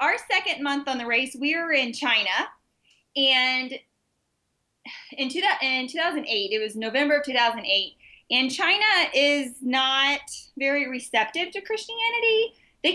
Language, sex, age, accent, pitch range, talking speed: English, female, 20-39, American, 220-280 Hz, 130 wpm